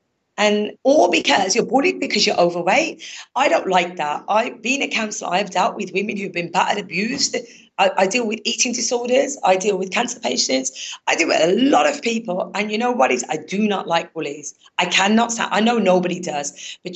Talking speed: 210 wpm